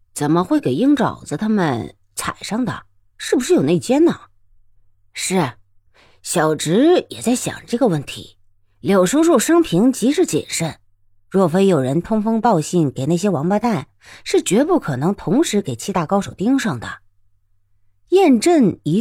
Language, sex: Chinese, female